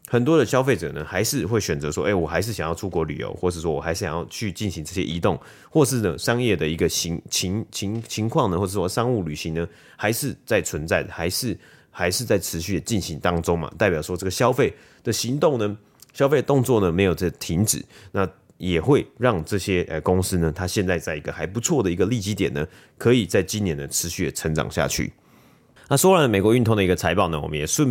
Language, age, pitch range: Chinese, 30-49, 90-120 Hz